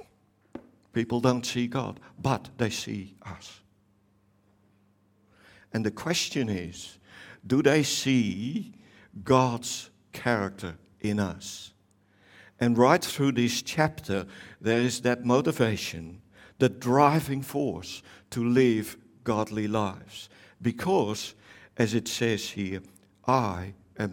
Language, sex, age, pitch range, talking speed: English, male, 60-79, 100-125 Hz, 105 wpm